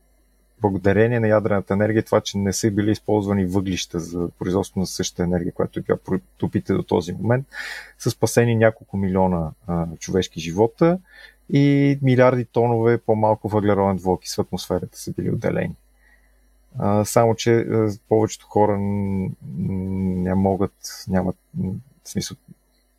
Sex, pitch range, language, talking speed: male, 95-120 Hz, Bulgarian, 125 wpm